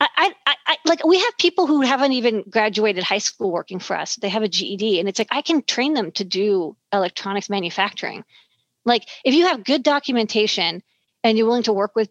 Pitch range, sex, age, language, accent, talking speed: 200-245 Hz, female, 40-59, English, American, 215 wpm